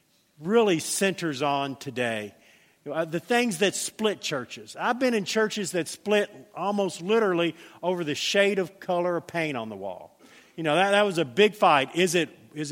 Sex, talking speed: male, 195 wpm